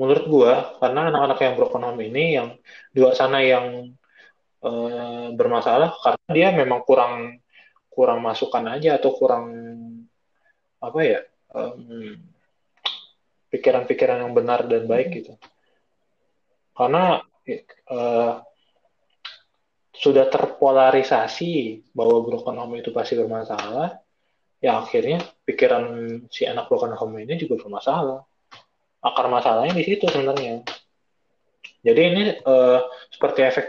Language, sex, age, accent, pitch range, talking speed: Indonesian, male, 20-39, native, 120-170 Hz, 105 wpm